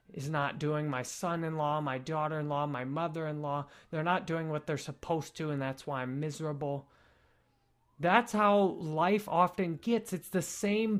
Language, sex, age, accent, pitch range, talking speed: English, male, 20-39, American, 140-180 Hz, 160 wpm